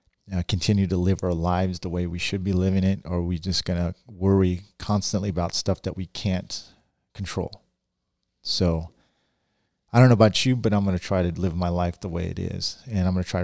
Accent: American